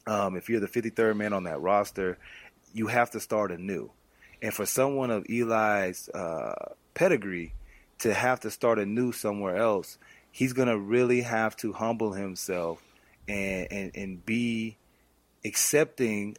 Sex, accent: male, American